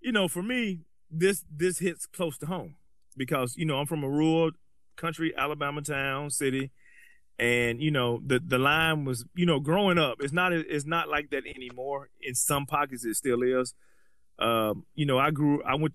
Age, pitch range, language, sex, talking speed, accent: 30-49, 130-170 Hz, English, male, 195 wpm, American